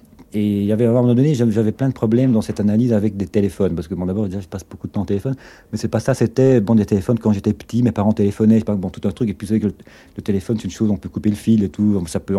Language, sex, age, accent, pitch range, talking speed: French, male, 40-59, French, 100-115 Hz, 340 wpm